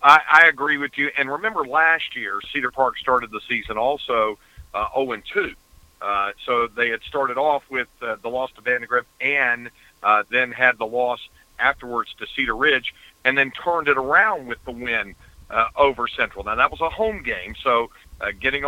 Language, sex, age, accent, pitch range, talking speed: English, male, 50-69, American, 115-140 Hz, 185 wpm